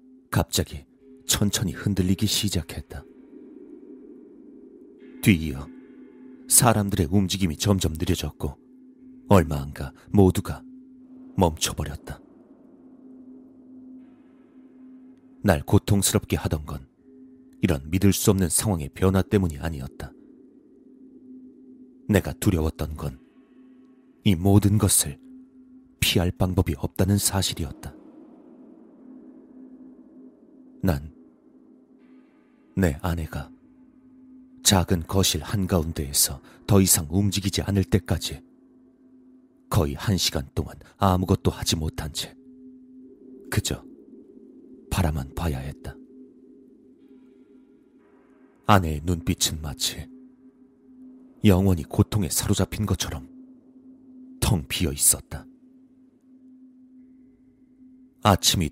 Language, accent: Korean, native